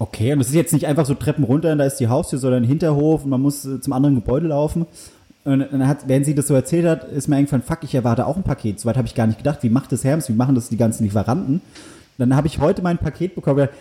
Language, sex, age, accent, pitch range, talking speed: German, male, 30-49, German, 125-165 Hz, 290 wpm